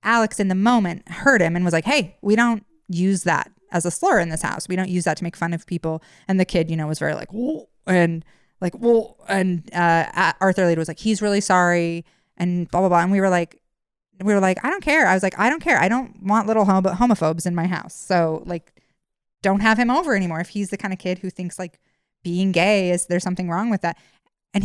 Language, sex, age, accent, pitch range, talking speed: English, female, 20-39, American, 165-205 Hz, 255 wpm